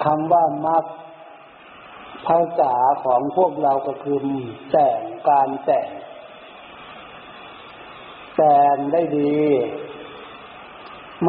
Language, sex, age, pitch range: Thai, male, 60-79, 130-165 Hz